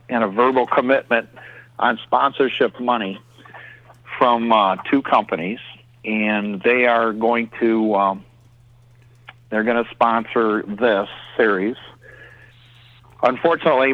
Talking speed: 110 wpm